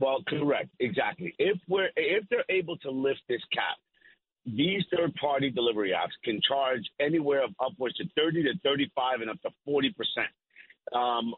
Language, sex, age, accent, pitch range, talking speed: English, male, 50-69, American, 130-185 Hz, 175 wpm